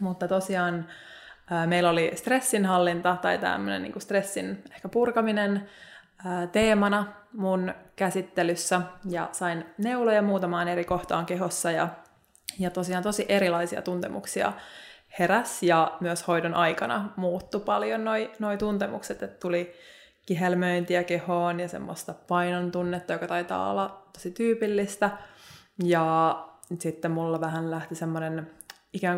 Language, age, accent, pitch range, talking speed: Finnish, 20-39, native, 175-205 Hz, 115 wpm